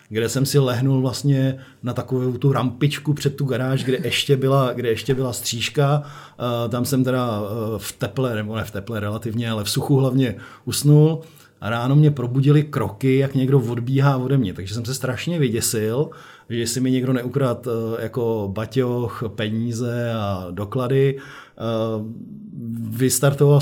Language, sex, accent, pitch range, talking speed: Czech, male, native, 120-140 Hz, 150 wpm